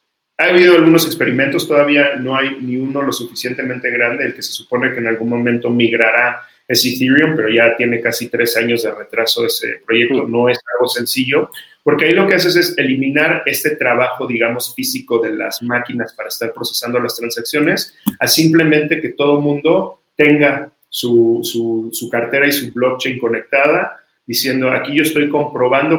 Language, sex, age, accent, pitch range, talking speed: Spanish, male, 40-59, Mexican, 120-155 Hz, 175 wpm